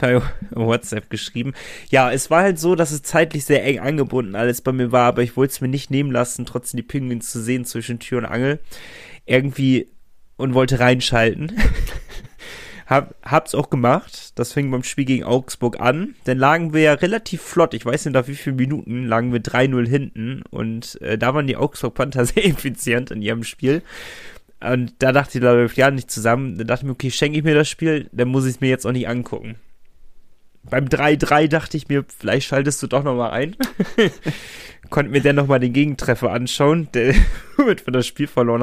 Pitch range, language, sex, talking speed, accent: 120-145 Hz, German, male, 205 wpm, German